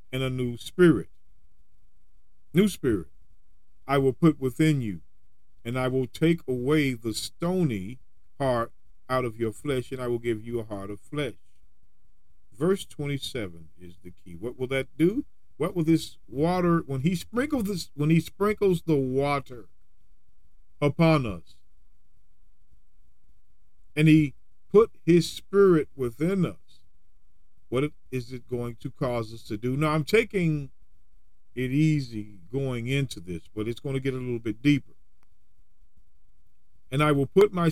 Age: 40-59